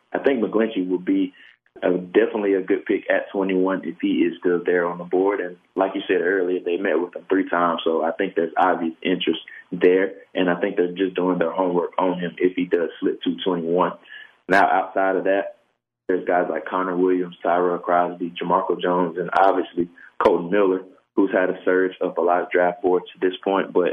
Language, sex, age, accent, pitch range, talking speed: English, male, 20-39, American, 90-95 Hz, 210 wpm